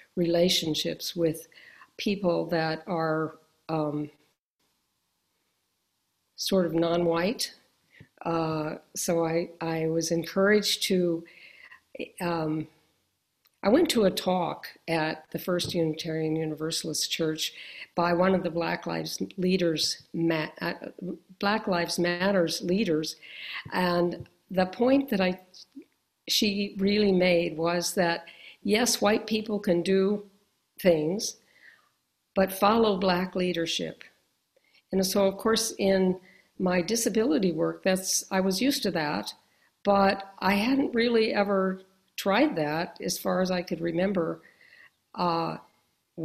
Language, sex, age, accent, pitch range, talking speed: English, female, 50-69, American, 165-195 Hz, 115 wpm